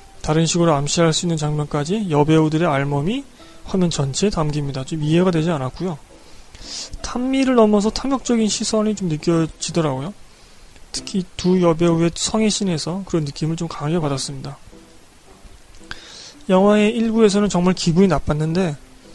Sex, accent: male, native